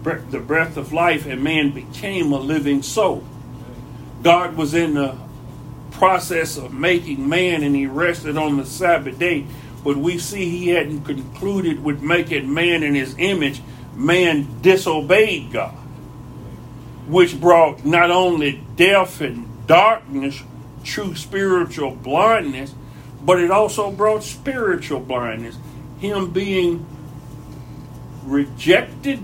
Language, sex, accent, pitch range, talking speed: English, male, American, 140-185 Hz, 120 wpm